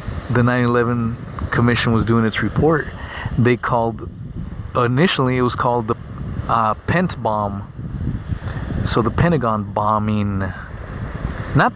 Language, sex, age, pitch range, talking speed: English, male, 30-49, 105-130 Hz, 110 wpm